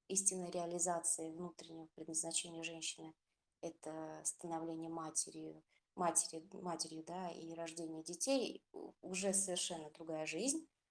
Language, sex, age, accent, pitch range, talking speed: Russian, female, 20-39, native, 165-195 Hz, 90 wpm